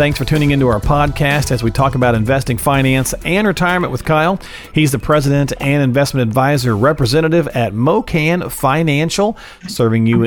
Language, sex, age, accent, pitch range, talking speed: English, male, 40-59, American, 115-145 Hz, 165 wpm